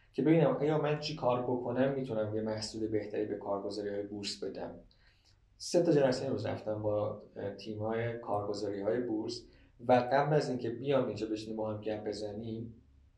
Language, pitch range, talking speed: Persian, 105-130 Hz, 150 wpm